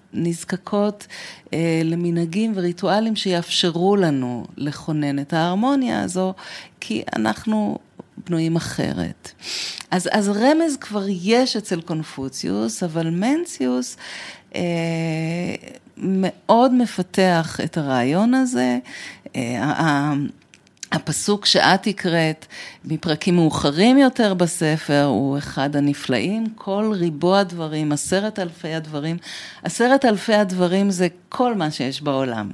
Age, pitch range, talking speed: 40-59, 155-205 Hz, 100 wpm